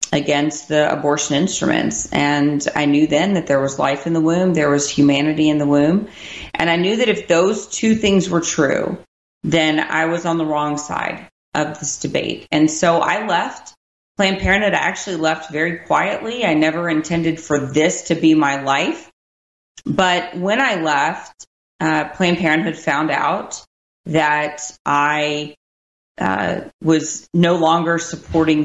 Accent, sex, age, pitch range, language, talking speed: American, female, 30-49, 145-170 Hz, English, 160 wpm